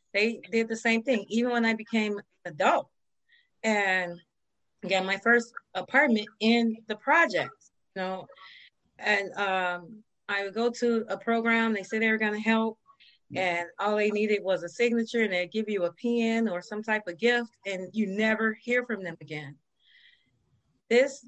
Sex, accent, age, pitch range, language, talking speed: female, American, 30-49, 185-230 Hz, English, 170 wpm